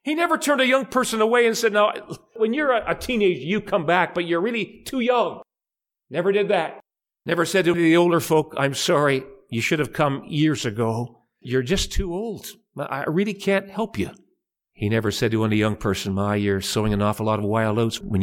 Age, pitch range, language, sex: 50-69, 110-170 Hz, English, male